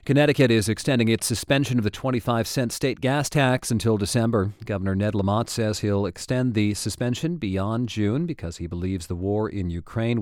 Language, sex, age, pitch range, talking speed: English, male, 40-59, 100-135 Hz, 175 wpm